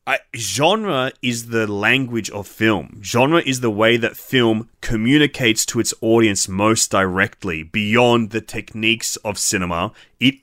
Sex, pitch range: male, 100-115 Hz